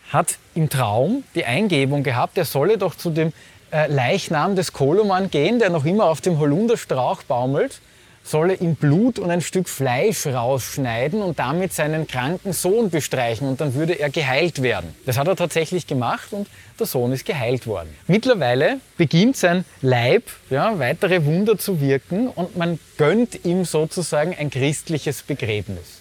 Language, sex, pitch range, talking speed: German, male, 130-180 Hz, 160 wpm